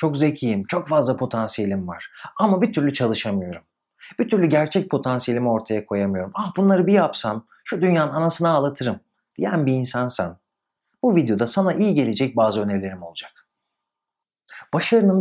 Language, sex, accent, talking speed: Turkish, male, native, 140 wpm